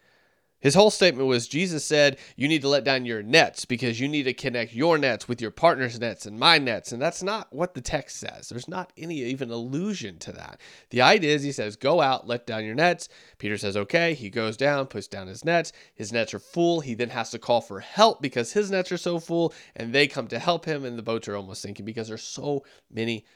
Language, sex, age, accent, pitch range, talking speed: English, male, 30-49, American, 110-145 Hz, 245 wpm